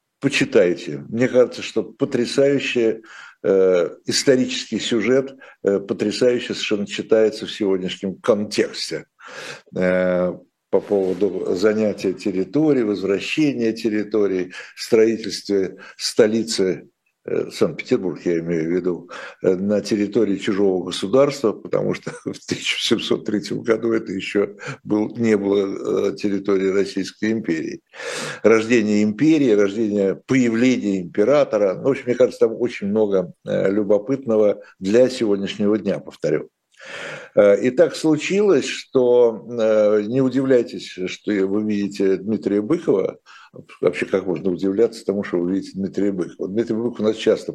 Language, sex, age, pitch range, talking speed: Russian, male, 60-79, 100-125 Hz, 110 wpm